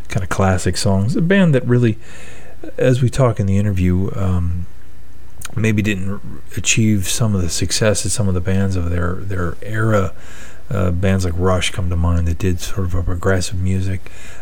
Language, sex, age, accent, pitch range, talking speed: English, male, 40-59, American, 90-105 Hz, 185 wpm